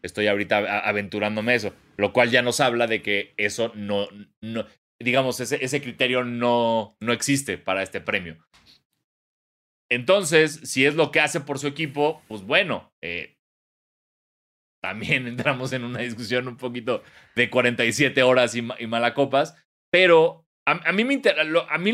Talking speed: 165 wpm